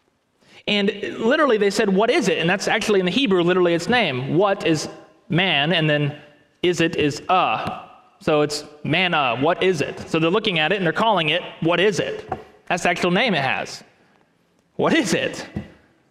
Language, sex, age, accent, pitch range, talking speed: English, male, 30-49, American, 170-235 Hz, 195 wpm